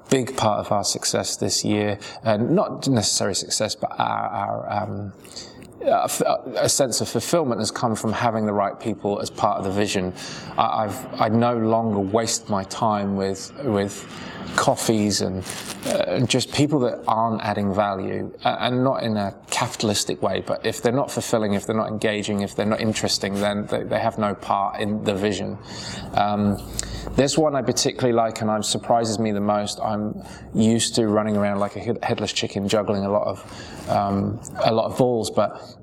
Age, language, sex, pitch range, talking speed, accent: 20-39, English, male, 105-115 Hz, 195 wpm, British